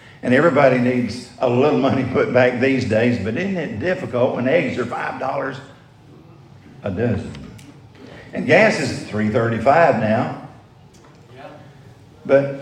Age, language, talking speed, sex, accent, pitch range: 50-69, English, 125 wpm, male, American, 115-135 Hz